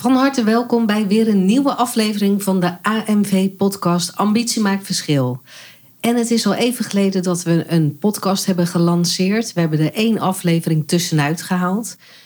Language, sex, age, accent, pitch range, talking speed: Dutch, female, 40-59, Dutch, 165-195 Hz, 160 wpm